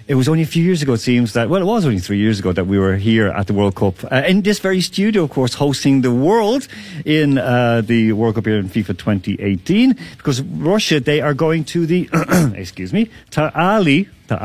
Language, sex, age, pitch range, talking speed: English, male, 40-59, 110-160 Hz, 230 wpm